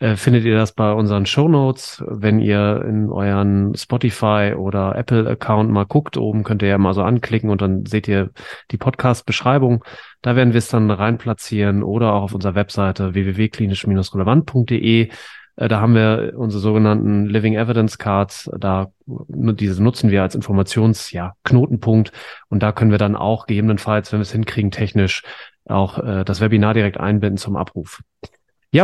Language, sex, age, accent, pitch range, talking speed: German, male, 30-49, German, 105-125 Hz, 150 wpm